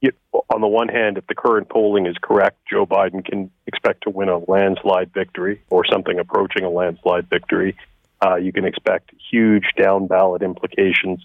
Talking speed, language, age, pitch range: 170 wpm, English, 40-59, 90-100 Hz